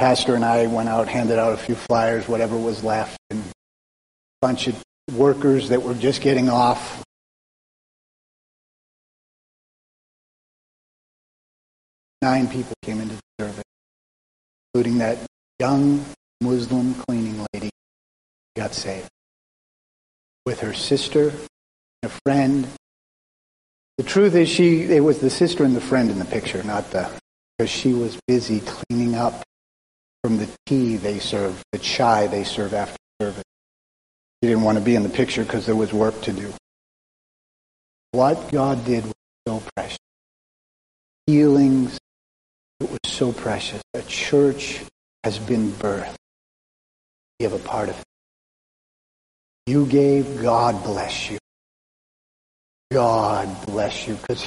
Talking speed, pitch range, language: 135 wpm, 105-130 Hz, English